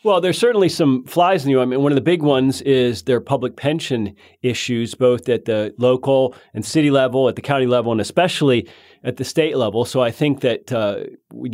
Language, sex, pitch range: English, male, 120-150 Hz